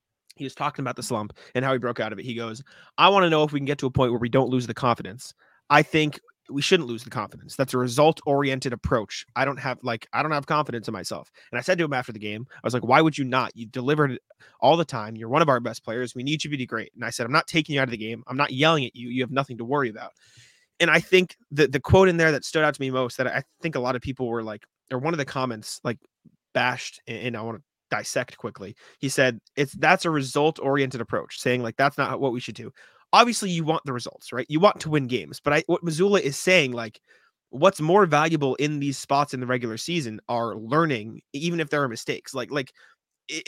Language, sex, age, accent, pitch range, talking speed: English, male, 30-49, American, 120-150 Hz, 275 wpm